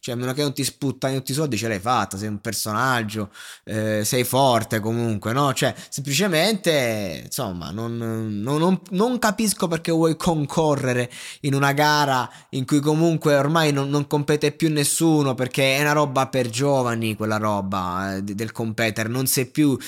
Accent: native